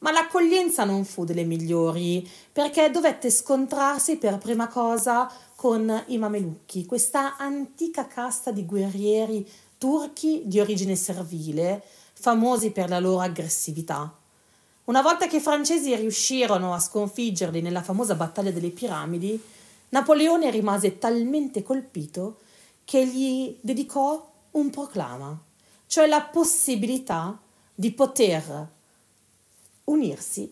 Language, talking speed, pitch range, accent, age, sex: Italian, 110 wpm, 190-265 Hz, native, 40-59, female